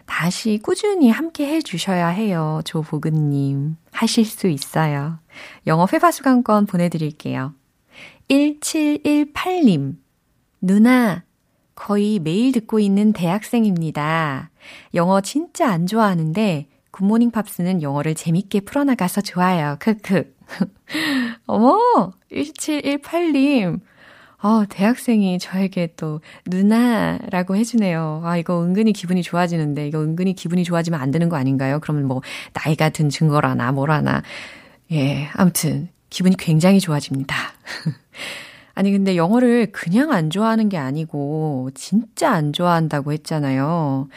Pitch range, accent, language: 155-220 Hz, native, Korean